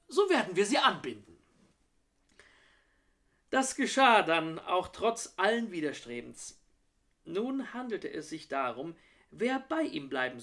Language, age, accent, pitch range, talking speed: German, 40-59, German, 145-210 Hz, 120 wpm